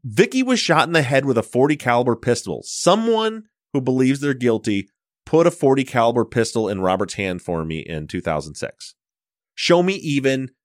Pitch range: 110-145 Hz